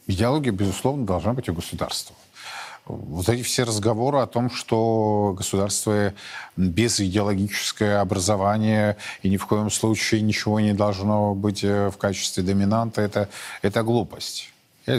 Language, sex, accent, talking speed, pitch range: Russian, male, native, 130 wpm, 100-125 Hz